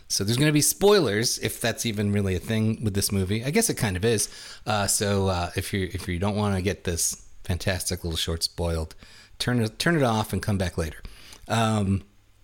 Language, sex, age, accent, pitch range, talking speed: English, male, 30-49, American, 95-115 Hz, 225 wpm